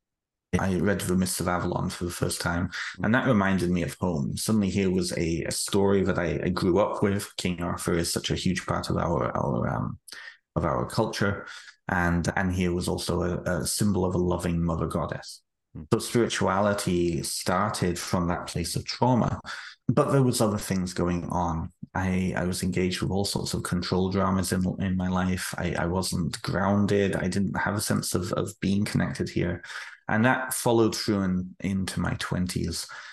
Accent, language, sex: British, English, male